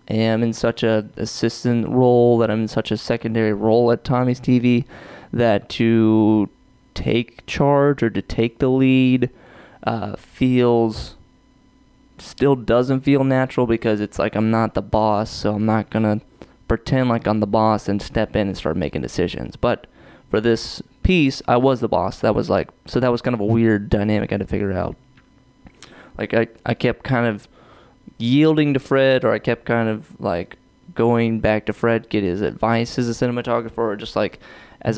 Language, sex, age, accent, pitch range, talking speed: English, male, 20-39, American, 105-120 Hz, 185 wpm